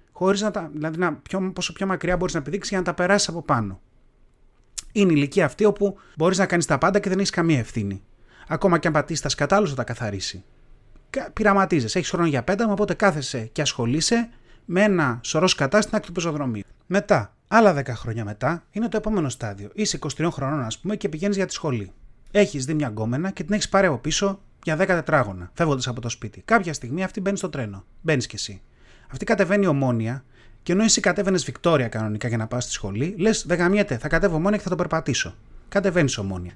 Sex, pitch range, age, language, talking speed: male, 120-185 Hz, 30-49, Greek, 205 wpm